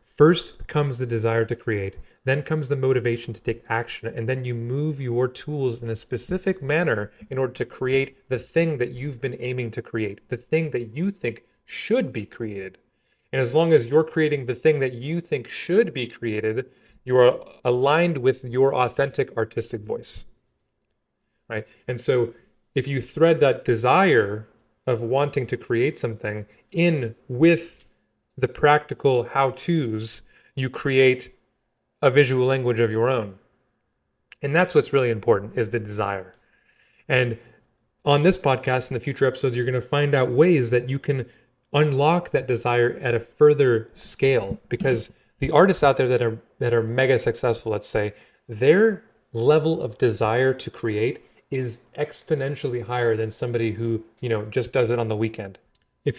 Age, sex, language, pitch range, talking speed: 30-49, male, English, 115-145 Hz, 170 wpm